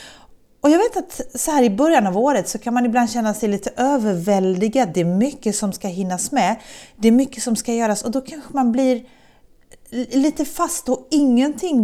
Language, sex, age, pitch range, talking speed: Swedish, female, 30-49, 185-255 Hz, 205 wpm